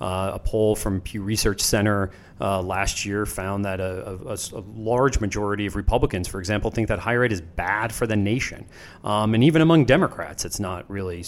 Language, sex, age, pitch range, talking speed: English, male, 30-49, 95-120 Hz, 200 wpm